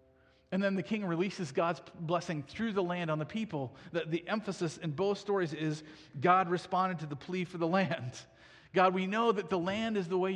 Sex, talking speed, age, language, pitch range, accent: male, 215 wpm, 40-59, English, 145-195 Hz, American